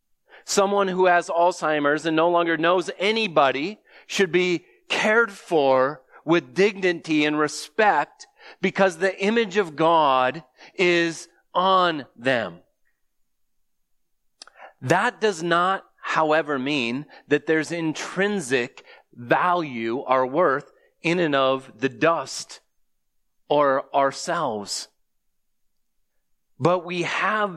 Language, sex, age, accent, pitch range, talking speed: English, male, 30-49, American, 135-185 Hz, 100 wpm